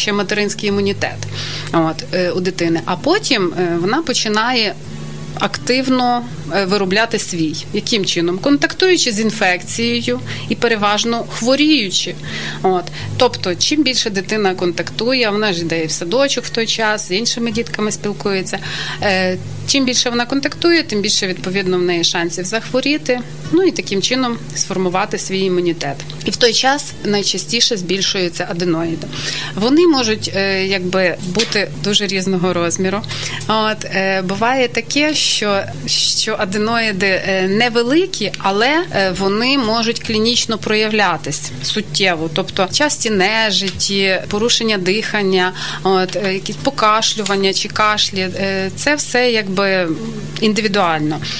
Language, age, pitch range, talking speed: Ukrainian, 30-49, 185-230 Hz, 115 wpm